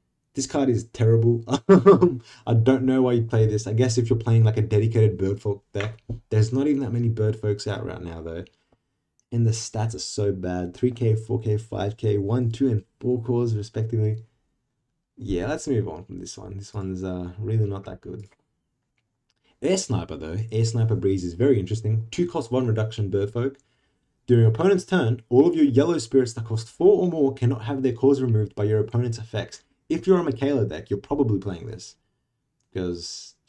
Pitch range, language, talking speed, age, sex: 100-135 Hz, English, 190 wpm, 20-39, male